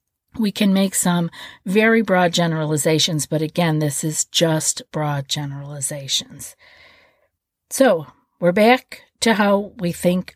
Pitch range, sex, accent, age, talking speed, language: 170-225 Hz, female, American, 50-69, 120 wpm, English